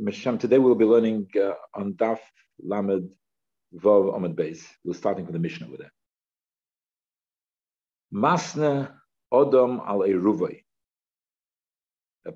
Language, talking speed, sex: English, 105 wpm, male